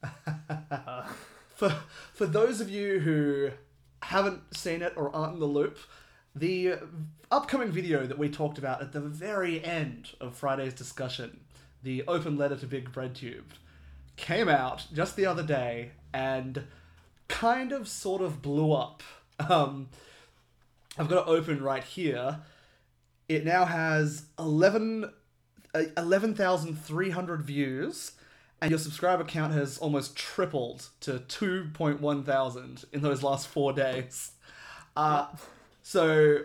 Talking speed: 130 wpm